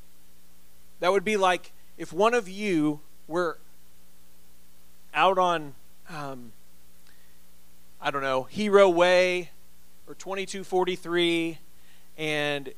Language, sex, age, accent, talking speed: English, male, 40-59, American, 95 wpm